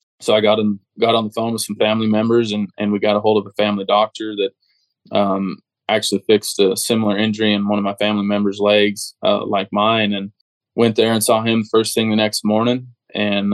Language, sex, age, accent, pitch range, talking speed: English, male, 20-39, American, 105-110 Hz, 220 wpm